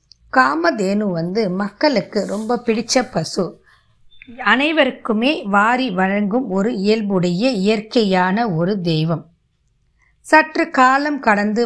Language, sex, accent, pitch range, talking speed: Tamil, female, native, 185-235 Hz, 85 wpm